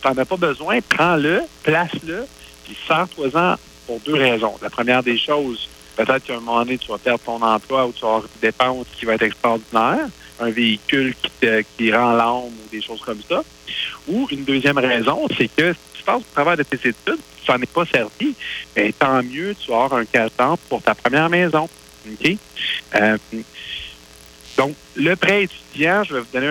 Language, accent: French, Canadian